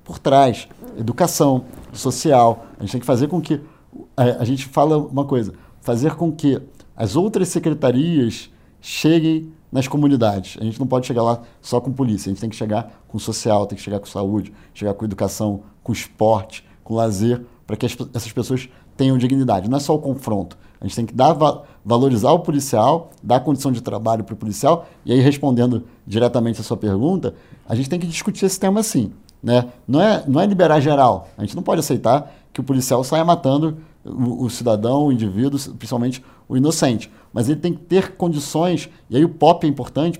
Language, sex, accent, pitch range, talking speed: Portuguese, male, Brazilian, 115-160 Hz, 195 wpm